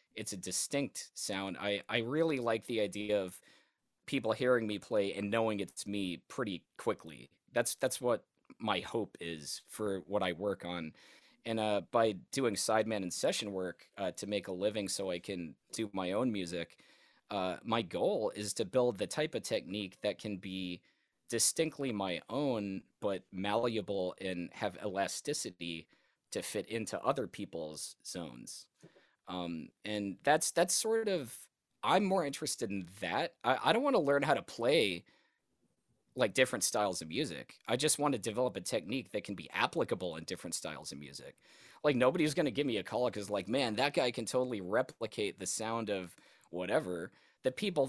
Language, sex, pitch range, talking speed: English, male, 95-125 Hz, 180 wpm